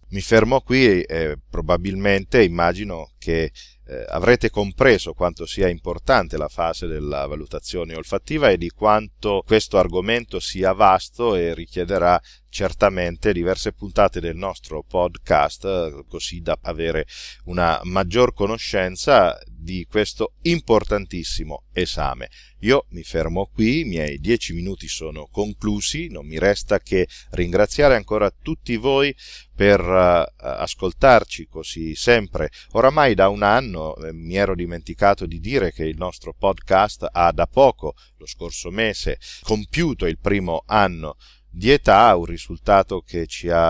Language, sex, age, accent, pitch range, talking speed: Italian, male, 40-59, native, 85-105 Hz, 130 wpm